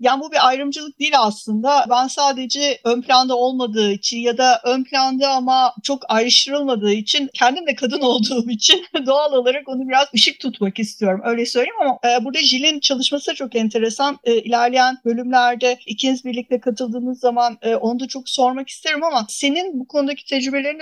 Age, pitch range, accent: 50-69, 235-280 Hz, native